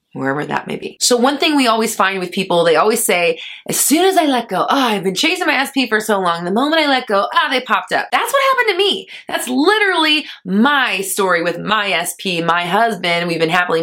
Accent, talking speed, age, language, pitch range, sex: American, 245 wpm, 20-39, English, 170-230 Hz, female